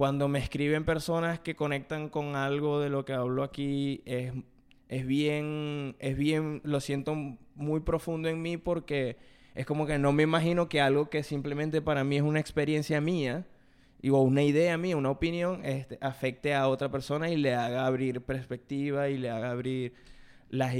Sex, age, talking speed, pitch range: male, 20-39, 170 wpm, 130-145 Hz